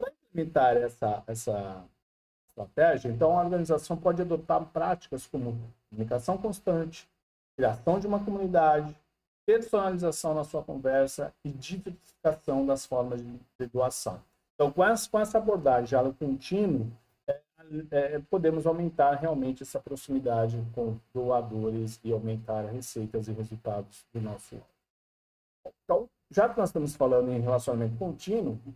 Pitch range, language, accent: 120-170 Hz, Portuguese, Brazilian